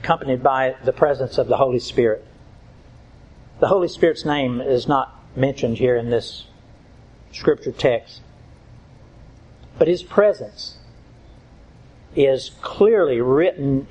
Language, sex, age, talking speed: English, male, 60-79, 110 wpm